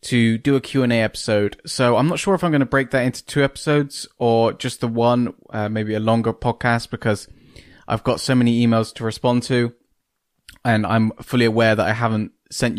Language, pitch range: English, 110-135 Hz